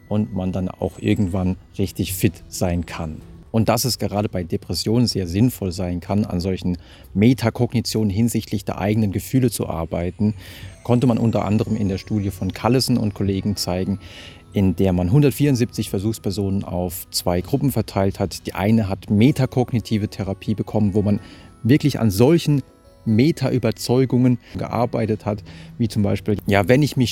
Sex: male